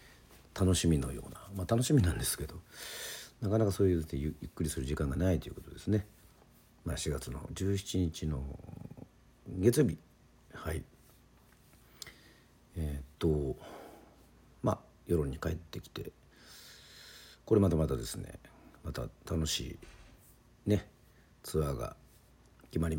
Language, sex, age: Japanese, male, 50-69